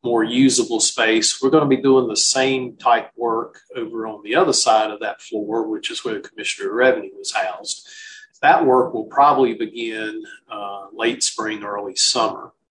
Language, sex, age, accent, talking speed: English, male, 40-59, American, 185 wpm